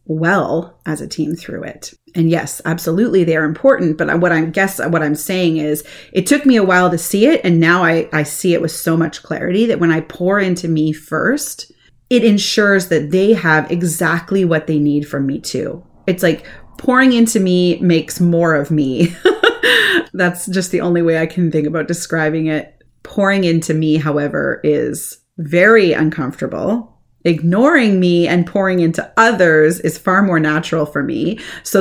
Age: 30-49